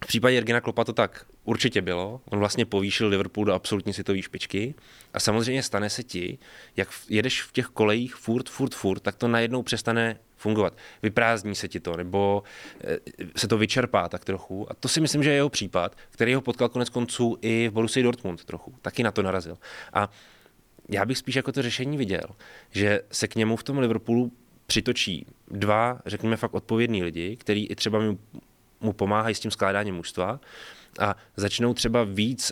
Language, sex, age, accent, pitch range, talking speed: Czech, male, 20-39, native, 105-125 Hz, 185 wpm